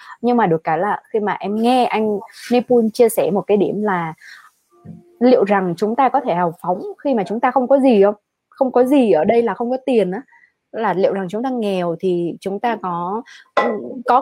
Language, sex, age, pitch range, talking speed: Vietnamese, female, 20-39, 190-255 Hz, 230 wpm